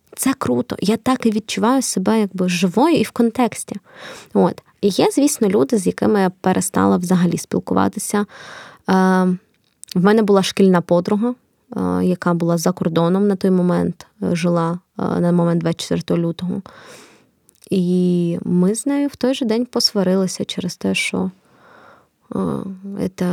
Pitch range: 180-205 Hz